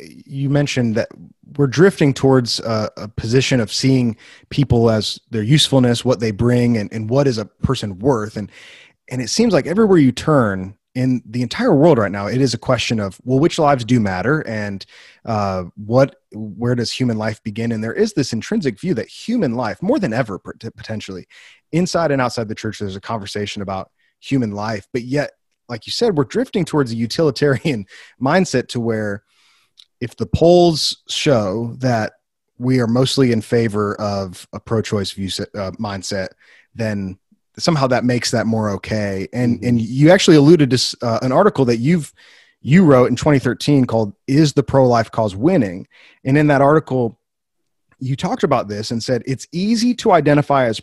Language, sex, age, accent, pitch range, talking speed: English, male, 30-49, American, 110-145 Hz, 180 wpm